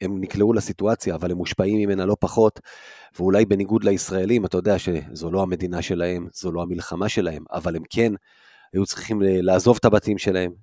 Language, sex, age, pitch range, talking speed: Hebrew, male, 30-49, 95-115 Hz, 175 wpm